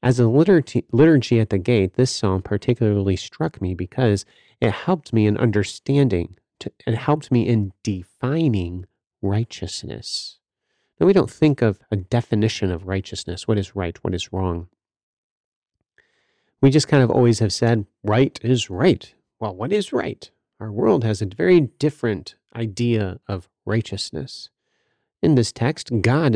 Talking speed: 150 wpm